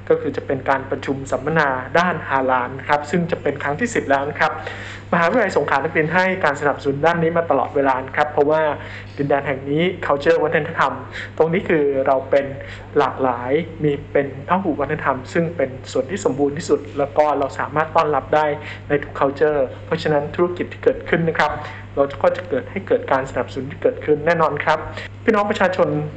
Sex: male